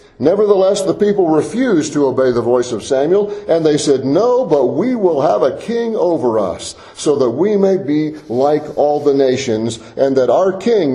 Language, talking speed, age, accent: English, 190 wpm, 50-69, American